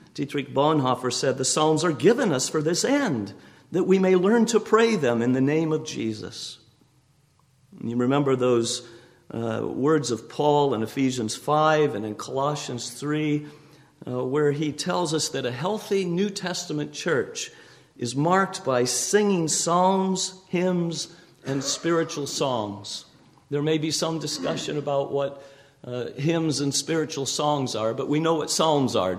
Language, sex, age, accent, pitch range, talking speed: English, male, 50-69, American, 130-165 Hz, 155 wpm